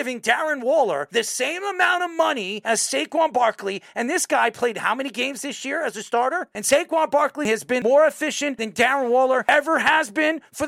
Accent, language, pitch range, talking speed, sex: American, English, 215-300 Hz, 210 wpm, male